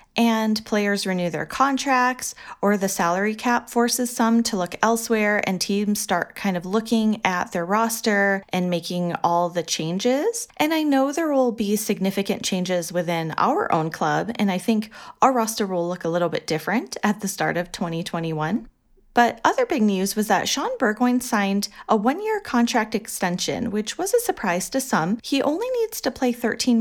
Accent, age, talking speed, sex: American, 30-49, 180 wpm, female